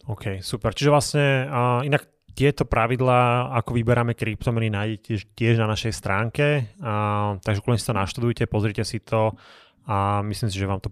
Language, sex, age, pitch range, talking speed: Slovak, male, 20-39, 105-120 Hz, 165 wpm